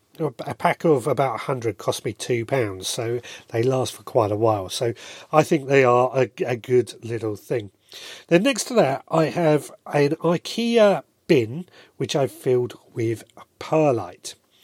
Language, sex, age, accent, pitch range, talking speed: English, male, 40-59, British, 115-165 Hz, 160 wpm